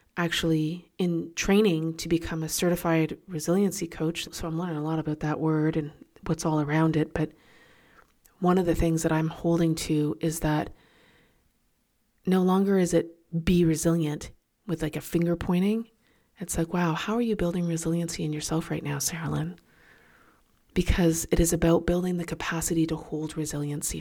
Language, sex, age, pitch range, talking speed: English, female, 30-49, 155-170 Hz, 170 wpm